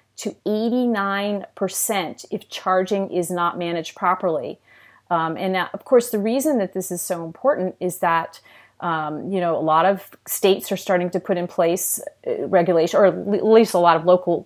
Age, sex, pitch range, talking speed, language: 30-49, female, 165-200 Hz, 185 wpm, English